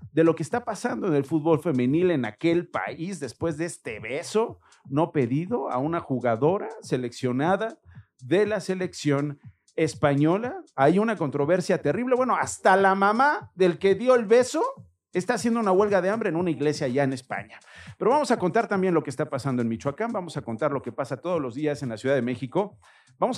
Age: 50-69